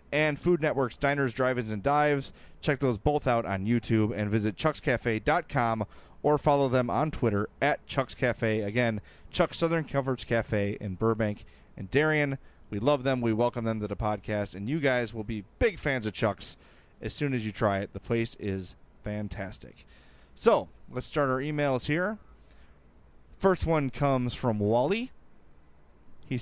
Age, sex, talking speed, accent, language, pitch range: 30-49, male, 165 wpm, American, English, 105-145 Hz